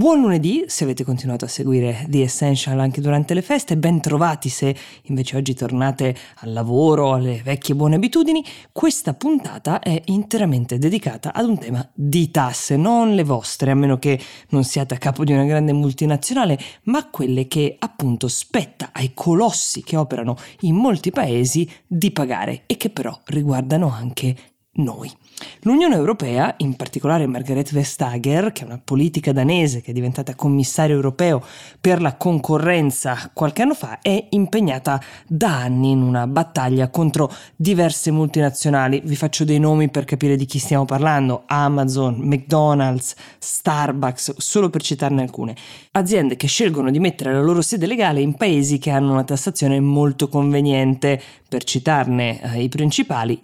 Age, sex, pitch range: 20-39, female, 130-160 Hz